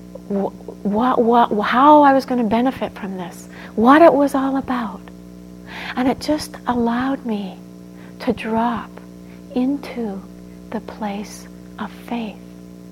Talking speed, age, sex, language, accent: 130 wpm, 60-79, female, English, American